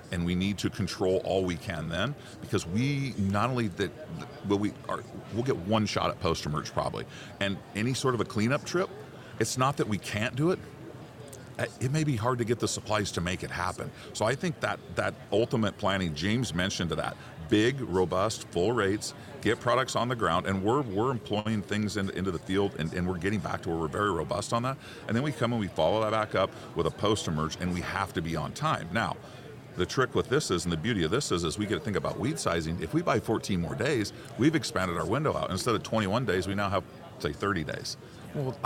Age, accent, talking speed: 40-59, American, 240 wpm